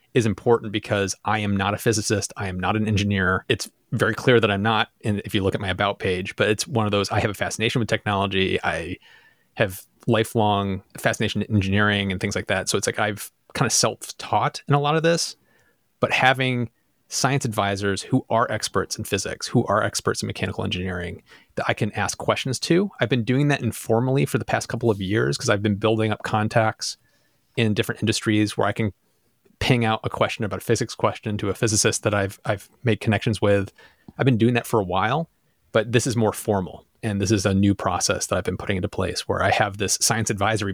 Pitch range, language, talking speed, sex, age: 100-115 Hz, English, 220 wpm, male, 30-49